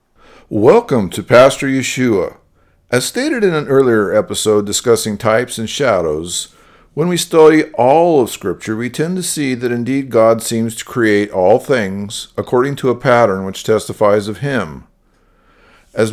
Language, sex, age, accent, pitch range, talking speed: English, male, 50-69, American, 105-145 Hz, 155 wpm